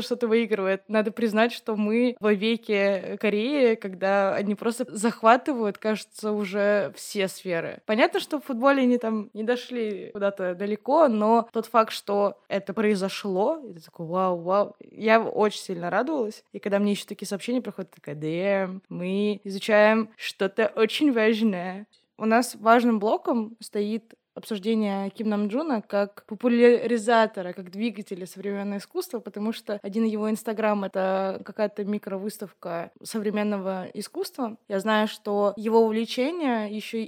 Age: 20-39